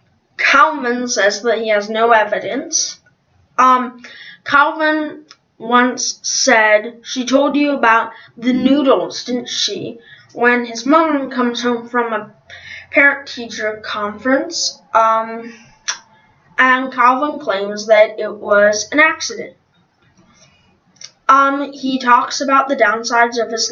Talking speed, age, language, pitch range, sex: 115 wpm, 10-29, English, 230-280 Hz, female